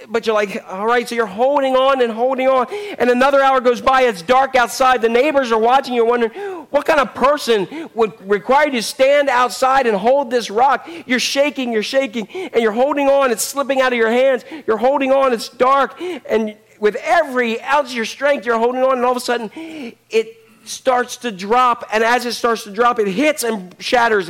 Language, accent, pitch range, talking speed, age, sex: English, American, 210-275 Hz, 215 wpm, 40-59, male